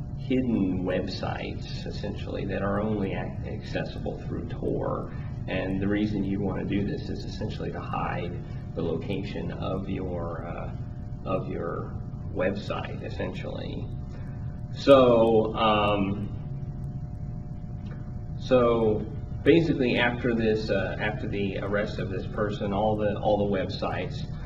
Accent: American